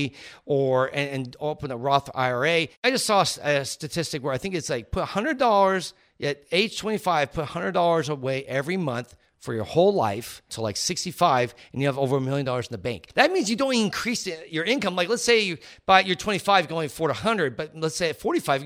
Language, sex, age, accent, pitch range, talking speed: English, male, 40-59, American, 135-185 Hz, 215 wpm